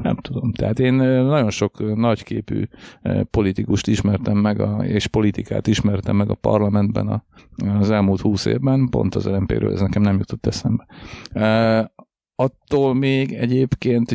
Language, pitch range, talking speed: Hungarian, 95-115 Hz, 150 wpm